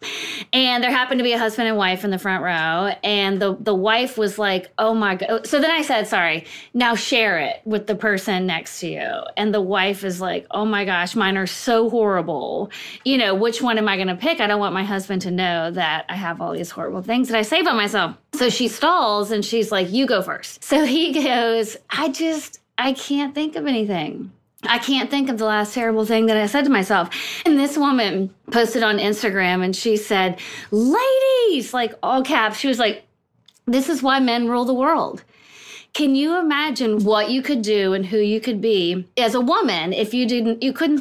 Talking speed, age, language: 220 wpm, 30-49, English